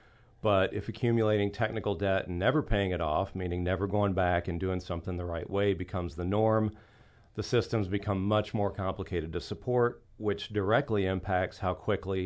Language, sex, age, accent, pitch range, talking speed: English, male, 40-59, American, 95-110 Hz, 175 wpm